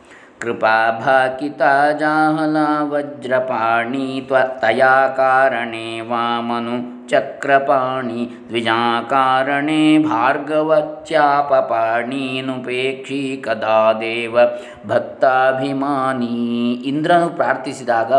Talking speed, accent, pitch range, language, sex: 45 wpm, native, 120-150 Hz, Kannada, male